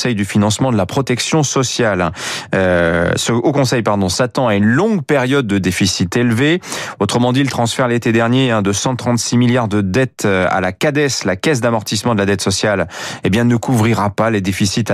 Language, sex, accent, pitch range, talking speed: French, male, French, 105-140 Hz, 195 wpm